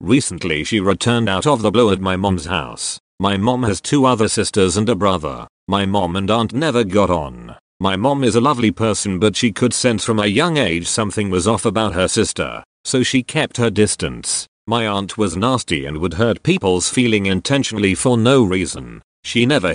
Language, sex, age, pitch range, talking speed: English, male, 40-59, 95-125 Hz, 205 wpm